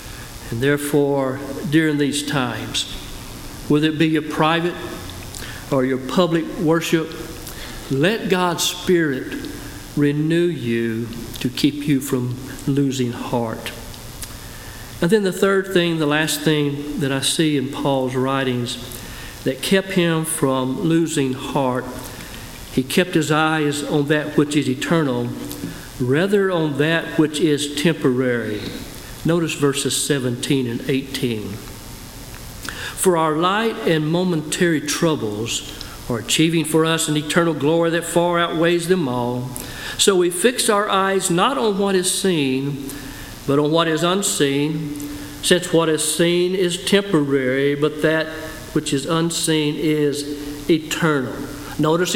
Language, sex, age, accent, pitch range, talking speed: English, male, 50-69, American, 130-170 Hz, 130 wpm